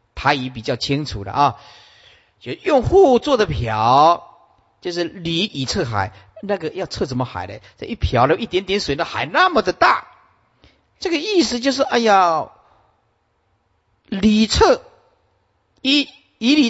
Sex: male